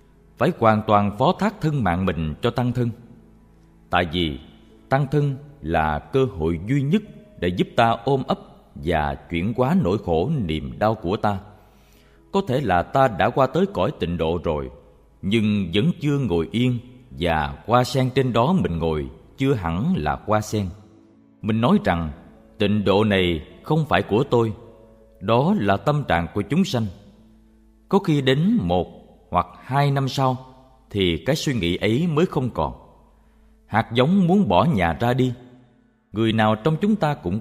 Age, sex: 20-39, male